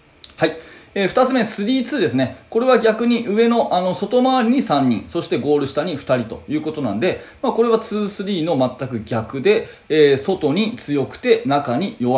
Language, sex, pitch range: Japanese, male, 130-210 Hz